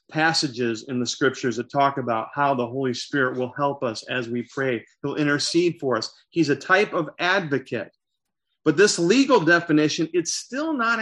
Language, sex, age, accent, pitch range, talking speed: English, male, 40-59, American, 130-175 Hz, 180 wpm